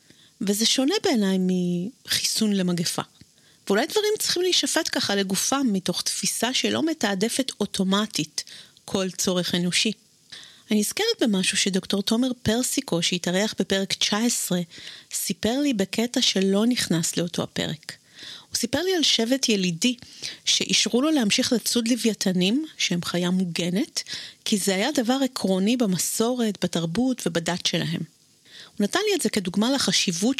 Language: Hebrew